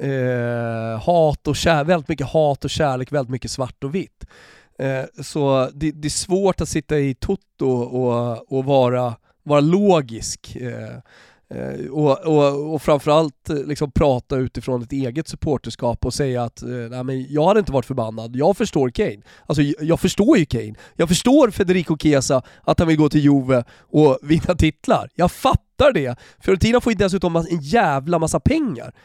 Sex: male